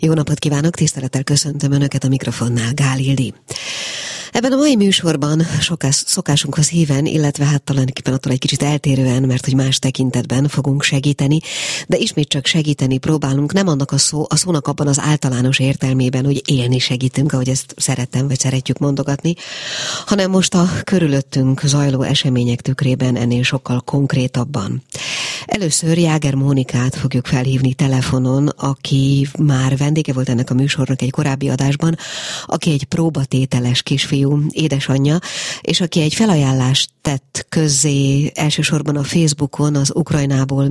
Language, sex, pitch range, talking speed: Hungarian, female, 130-150 Hz, 140 wpm